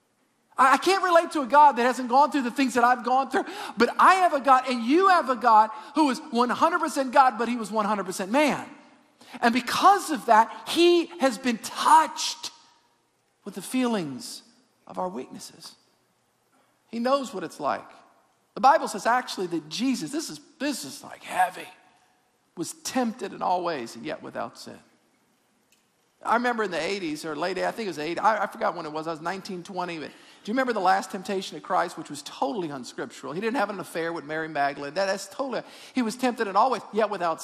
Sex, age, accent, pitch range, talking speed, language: male, 50-69, American, 215-295 Hz, 200 wpm, English